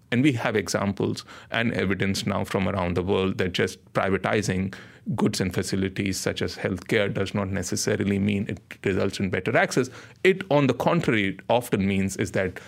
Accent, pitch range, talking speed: Indian, 100-135 Hz, 175 wpm